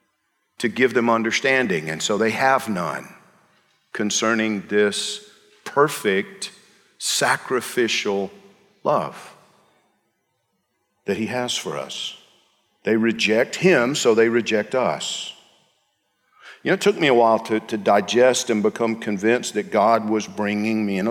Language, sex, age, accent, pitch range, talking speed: English, male, 50-69, American, 110-150 Hz, 130 wpm